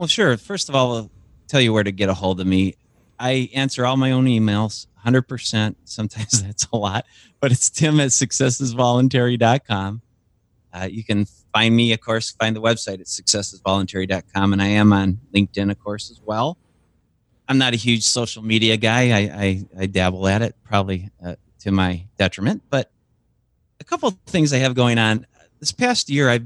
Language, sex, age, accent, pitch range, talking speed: English, male, 30-49, American, 95-120 Hz, 185 wpm